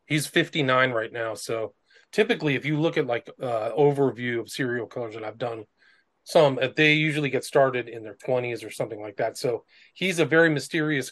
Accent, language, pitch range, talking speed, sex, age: American, English, 125-150 Hz, 200 wpm, male, 40-59